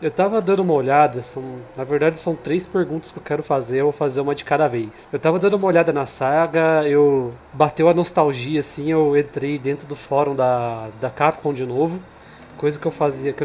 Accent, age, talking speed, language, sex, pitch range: Brazilian, 20-39, 220 wpm, Portuguese, male, 140-175 Hz